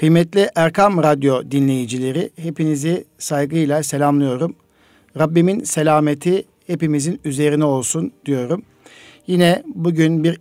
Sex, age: male, 60-79